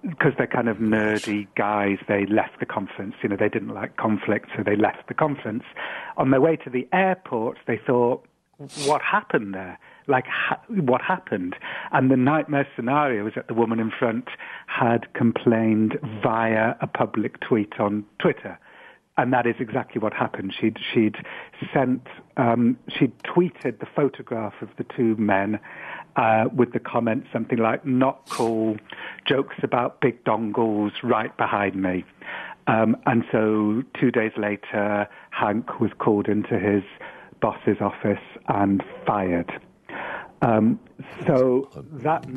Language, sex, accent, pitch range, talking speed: English, male, British, 105-130 Hz, 150 wpm